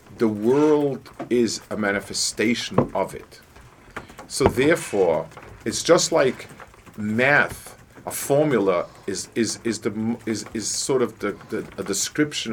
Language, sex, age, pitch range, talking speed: English, male, 50-69, 105-130 Hz, 130 wpm